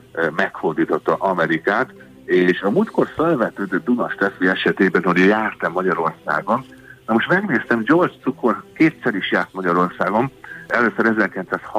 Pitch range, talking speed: 80-95 Hz, 105 wpm